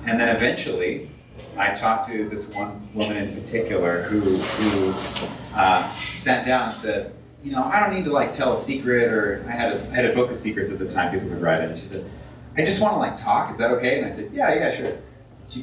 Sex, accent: male, American